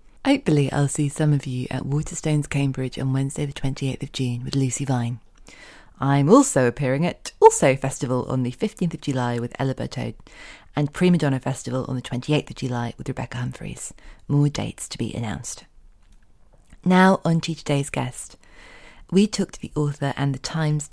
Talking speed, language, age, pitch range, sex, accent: 175 wpm, English, 30-49, 125-150 Hz, female, British